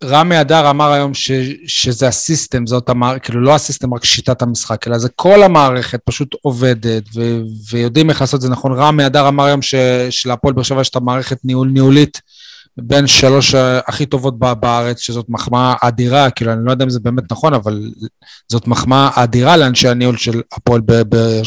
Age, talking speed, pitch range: 30-49, 185 wpm, 120-145 Hz